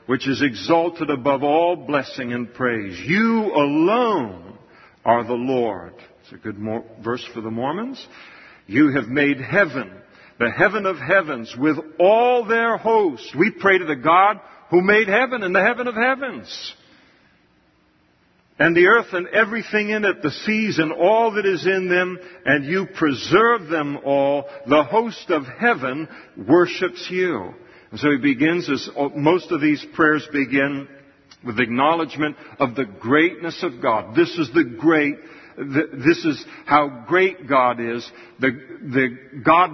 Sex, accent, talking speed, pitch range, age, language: male, American, 155 wpm, 140-190 Hz, 50-69, English